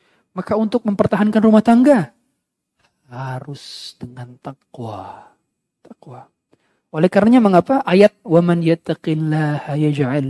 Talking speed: 100 wpm